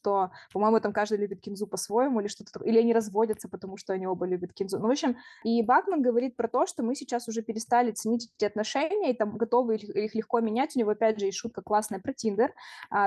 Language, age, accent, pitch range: Russian, 20-39, native, 210-245 Hz